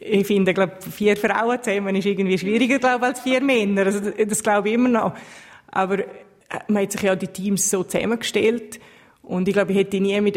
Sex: female